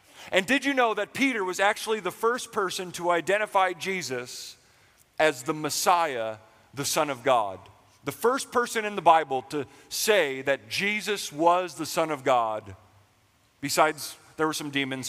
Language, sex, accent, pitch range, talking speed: English, male, American, 115-175 Hz, 165 wpm